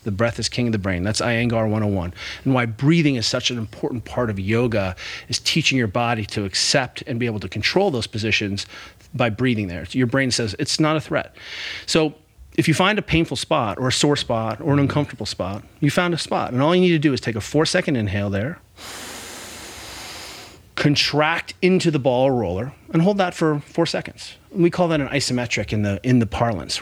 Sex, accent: male, American